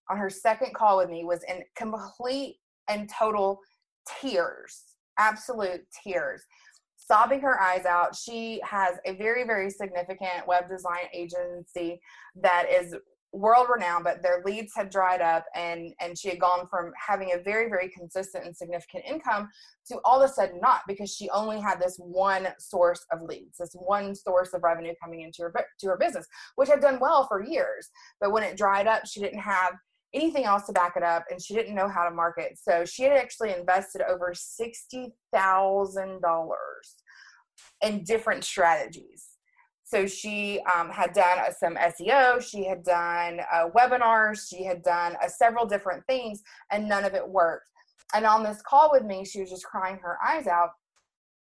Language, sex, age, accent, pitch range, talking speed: English, female, 20-39, American, 180-230 Hz, 175 wpm